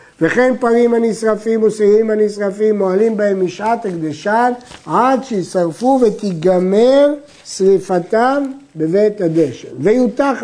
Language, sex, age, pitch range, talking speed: Hebrew, male, 60-79, 175-245 Hz, 90 wpm